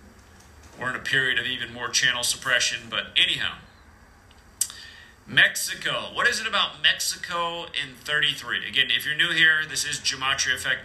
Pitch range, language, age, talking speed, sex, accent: 110-135 Hz, English, 40-59, 155 wpm, male, American